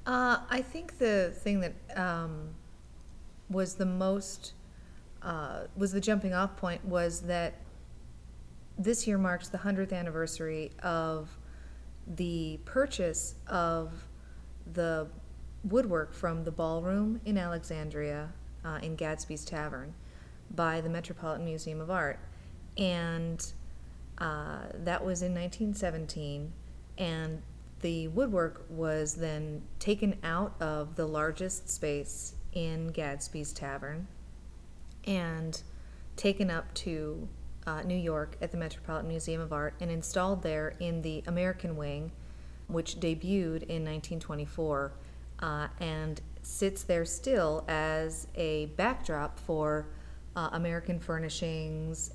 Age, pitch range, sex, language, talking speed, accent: 40-59, 150-180 Hz, female, English, 115 wpm, American